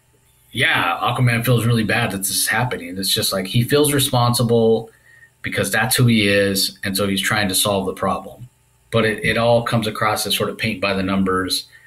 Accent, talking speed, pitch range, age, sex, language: American, 190 wpm, 100-125 Hz, 30-49, male, English